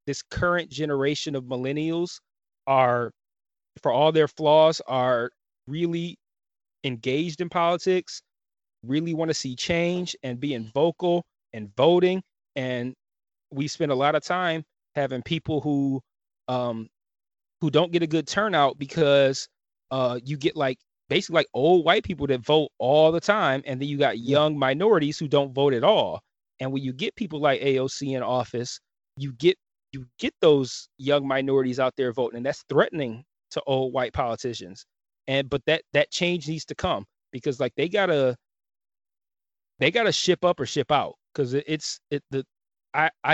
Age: 30-49